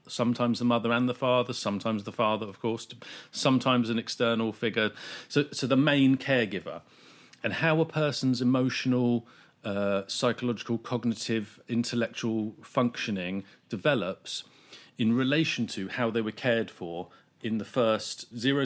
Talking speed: 140 wpm